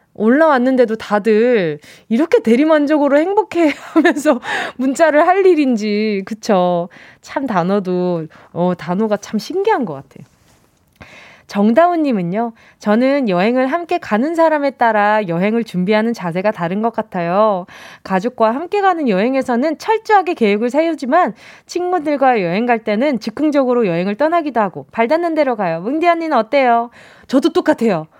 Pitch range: 200-305 Hz